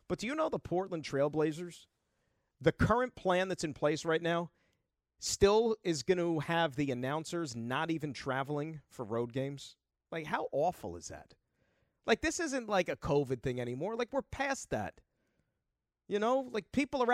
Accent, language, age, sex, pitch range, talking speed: American, English, 40-59, male, 155-215 Hz, 175 wpm